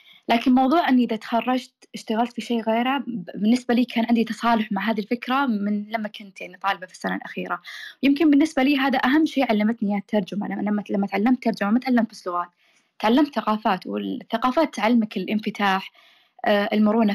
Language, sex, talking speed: Arabic, female, 175 wpm